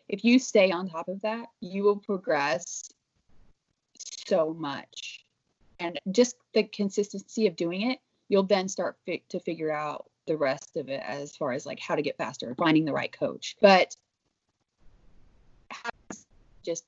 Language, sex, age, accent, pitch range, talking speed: English, female, 30-49, American, 160-230 Hz, 155 wpm